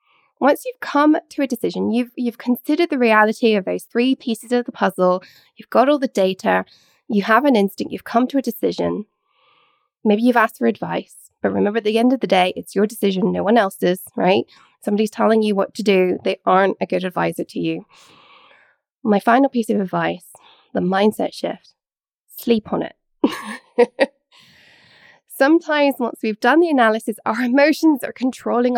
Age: 20-39